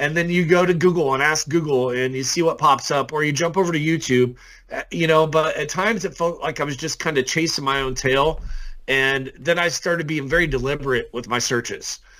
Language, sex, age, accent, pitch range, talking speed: English, male, 40-59, American, 135-180 Hz, 235 wpm